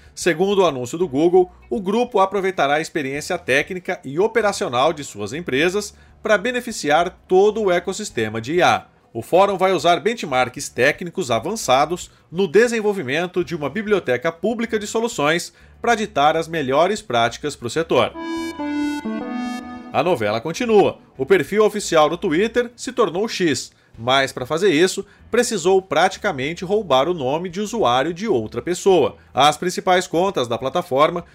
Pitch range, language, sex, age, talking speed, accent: 155-220 Hz, Portuguese, male, 40-59, 145 wpm, Brazilian